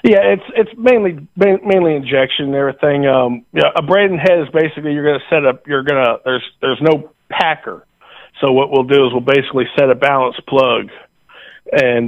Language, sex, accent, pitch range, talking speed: English, male, American, 125-145 Hz, 200 wpm